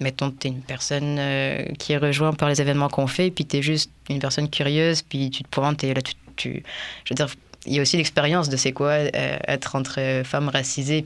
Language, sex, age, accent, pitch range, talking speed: French, female, 20-39, French, 135-150 Hz, 235 wpm